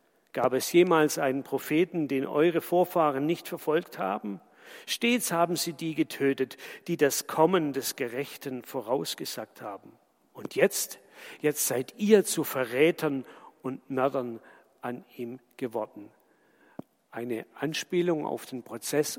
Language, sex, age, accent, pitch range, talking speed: German, male, 50-69, German, 135-180 Hz, 125 wpm